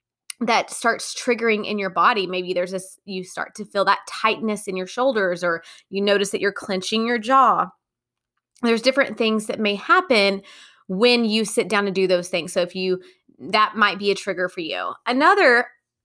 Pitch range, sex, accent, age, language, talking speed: 190-235 Hz, female, American, 20-39, English, 190 wpm